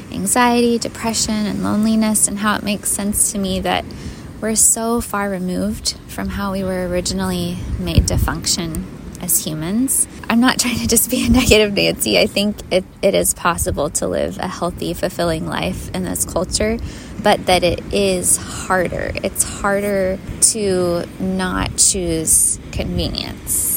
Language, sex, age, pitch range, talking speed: English, female, 20-39, 185-220 Hz, 155 wpm